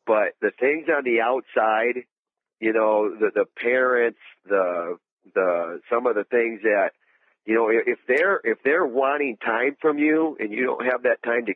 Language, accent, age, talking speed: English, American, 50-69, 180 wpm